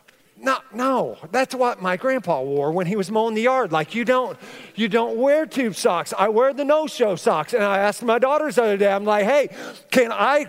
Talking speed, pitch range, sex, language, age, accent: 225 wpm, 165-245 Hz, male, English, 40-59, American